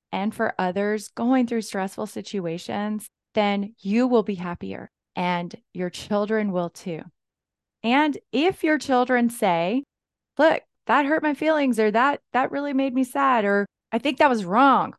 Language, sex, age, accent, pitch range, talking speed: English, female, 20-39, American, 185-245 Hz, 160 wpm